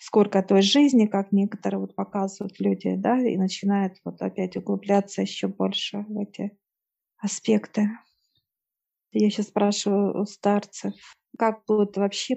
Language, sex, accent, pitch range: Russian, female, native, 195-215 Hz